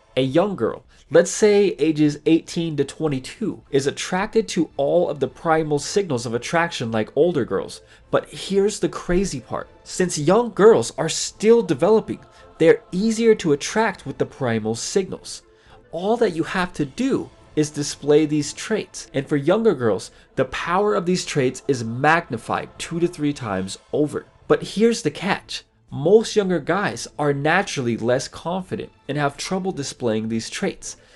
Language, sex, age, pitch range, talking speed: English, male, 30-49, 125-190 Hz, 160 wpm